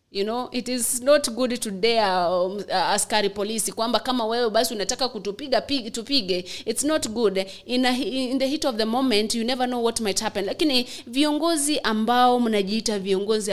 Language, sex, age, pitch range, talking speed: English, female, 30-49, 195-255 Hz, 175 wpm